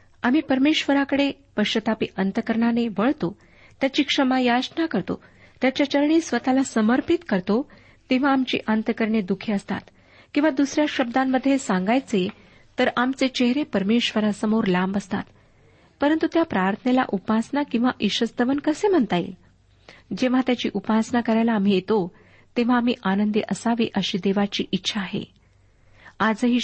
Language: Marathi